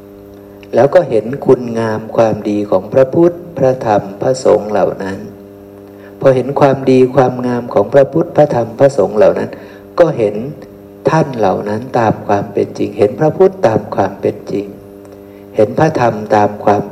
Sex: male